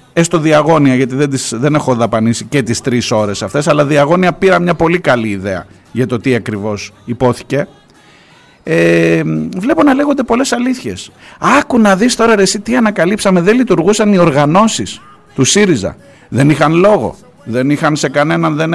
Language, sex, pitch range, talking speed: Greek, male, 135-195 Hz, 170 wpm